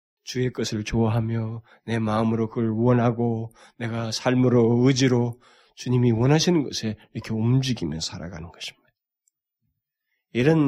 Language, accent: Korean, native